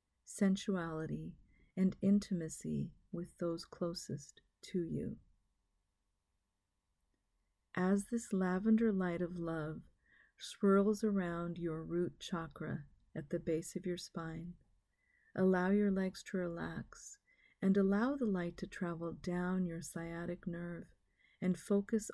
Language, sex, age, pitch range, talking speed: English, female, 40-59, 160-195 Hz, 115 wpm